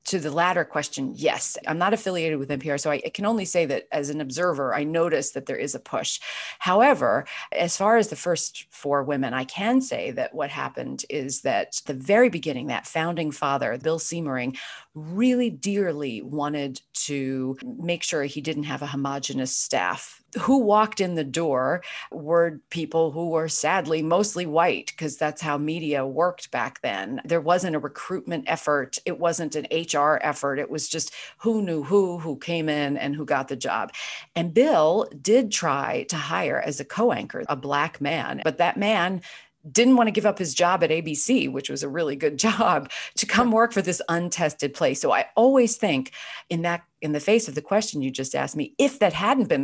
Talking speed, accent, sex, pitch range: 195 wpm, American, female, 150-210 Hz